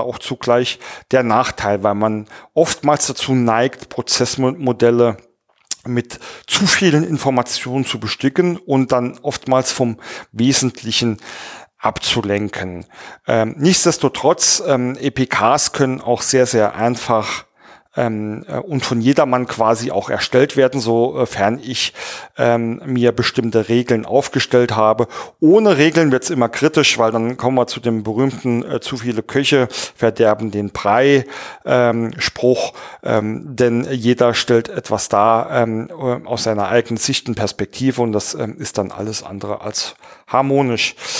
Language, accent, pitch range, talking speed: German, German, 115-135 Hz, 130 wpm